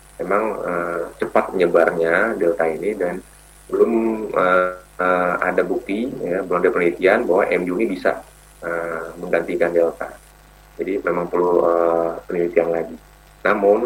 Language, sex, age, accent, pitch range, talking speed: Indonesian, male, 30-49, native, 85-90 Hz, 130 wpm